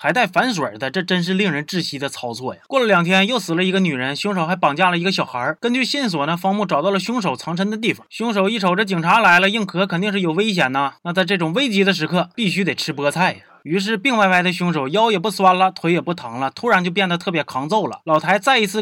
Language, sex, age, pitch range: Chinese, male, 20-39, 155-210 Hz